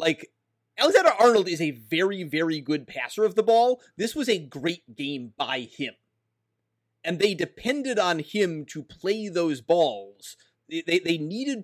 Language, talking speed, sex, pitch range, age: English, 160 wpm, male, 145-190 Hz, 30-49